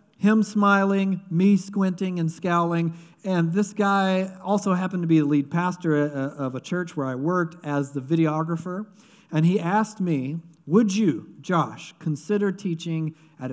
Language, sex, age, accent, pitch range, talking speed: English, male, 50-69, American, 155-195 Hz, 155 wpm